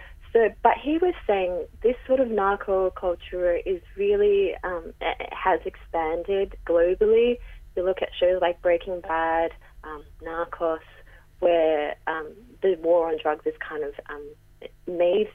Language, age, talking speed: English, 30-49, 135 wpm